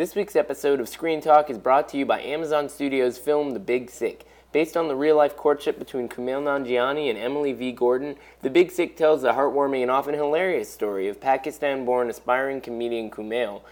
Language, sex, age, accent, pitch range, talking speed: English, male, 20-39, American, 120-150 Hz, 195 wpm